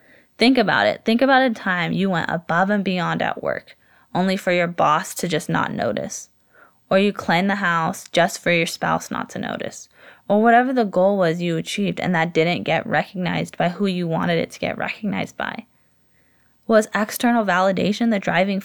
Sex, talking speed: female, 195 wpm